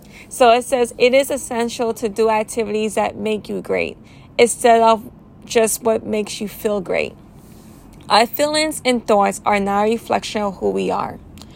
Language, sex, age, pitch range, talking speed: English, female, 20-39, 210-265 Hz, 170 wpm